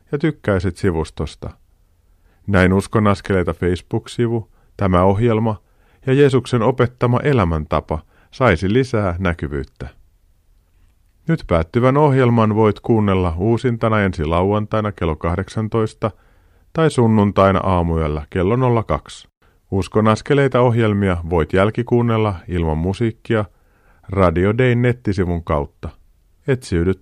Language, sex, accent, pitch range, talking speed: Finnish, male, native, 85-115 Hz, 90 wpm